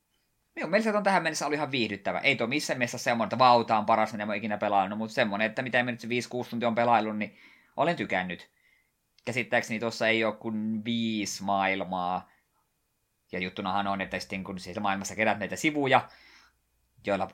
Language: Finnish